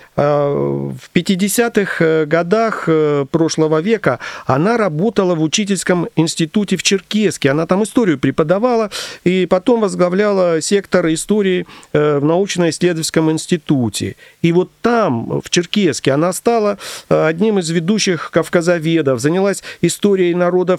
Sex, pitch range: male, 150-185 Hz